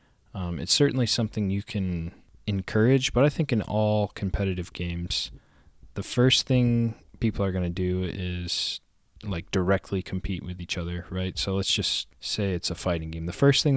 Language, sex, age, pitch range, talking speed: English, male, 20-39, 90-110 Hz, 180 wpm